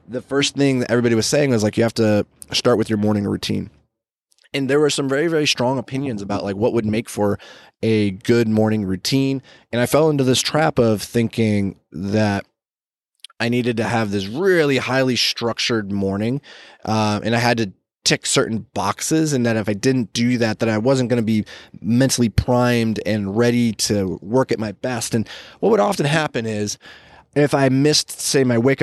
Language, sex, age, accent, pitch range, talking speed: English, male, 20-39, American, 110-130 Hz, 200 wpm